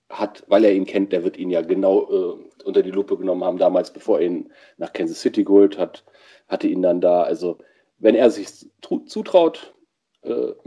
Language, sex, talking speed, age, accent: German, male, 195 wpm, 40-59, German